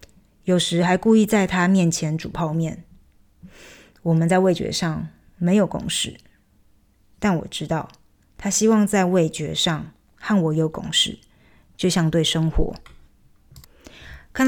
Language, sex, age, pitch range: Chinese, female, 20-39, 165-195 Hz